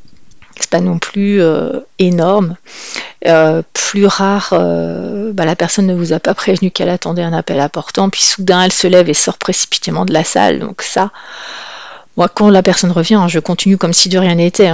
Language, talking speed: French, 200 wpm